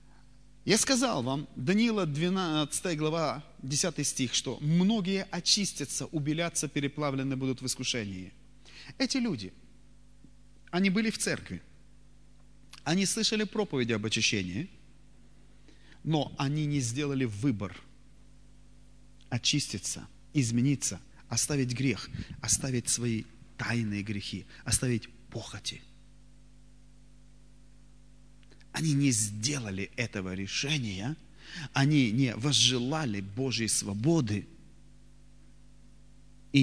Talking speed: 85 wpm